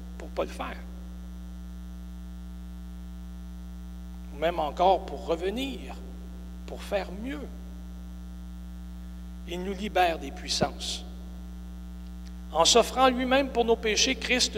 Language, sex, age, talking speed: French, male, 60-79, 95 wpm